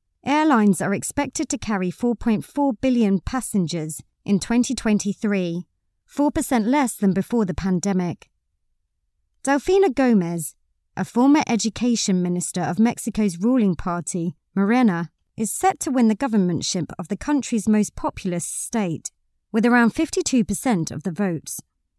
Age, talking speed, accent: 30-49, 120 wpm, British